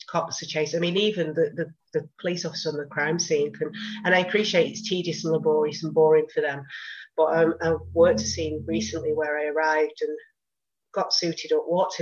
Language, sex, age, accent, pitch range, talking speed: English, female, 30-49, British, 155-190 Hz, 210 wpm